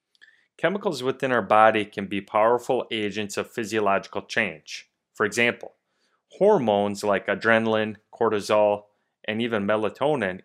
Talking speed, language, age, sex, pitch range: 115 wpm, English, 30-49, male, 100-115 Hz